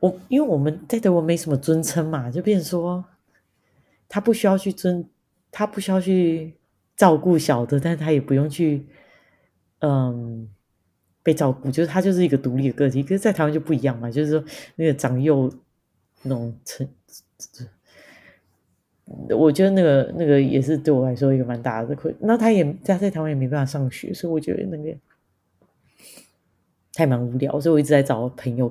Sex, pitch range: female, 130-165 Hz